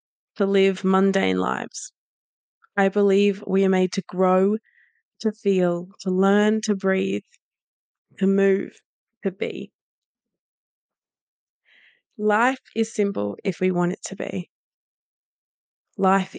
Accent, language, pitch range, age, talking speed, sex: Australian, English, 185-210 Hz, 20-39, 115 wpm, female